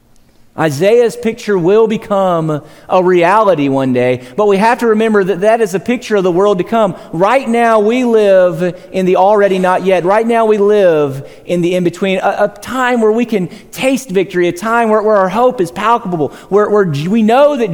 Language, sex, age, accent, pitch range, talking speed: English, male, 40-59, American, 145-215 Hz, 205 wpm